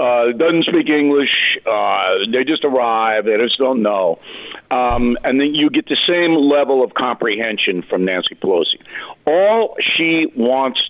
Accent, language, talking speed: American, English, 155 wpm